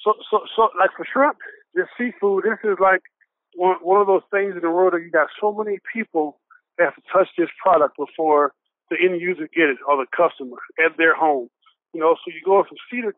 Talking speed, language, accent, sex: 230 wpm, English, American, male